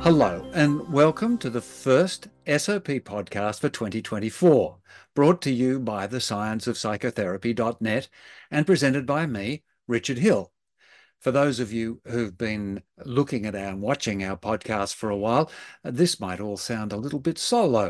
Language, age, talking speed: English, 60-79, 150 wpm